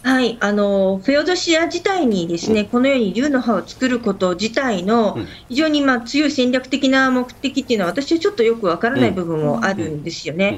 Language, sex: Japanese, female